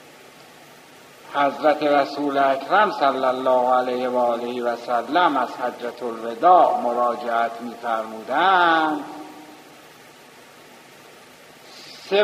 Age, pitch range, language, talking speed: 60-79, 115-160 Hz, Persian, 80 wpm